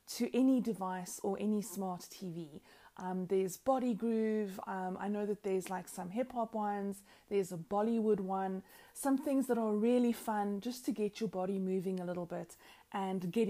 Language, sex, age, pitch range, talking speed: English, female, 30-49, 185-225 Hz, 185 wpm